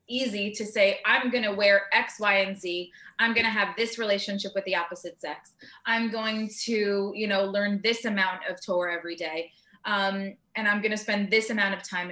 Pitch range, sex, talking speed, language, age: 195-235 Hz, female, 215 wpm, English, 20-39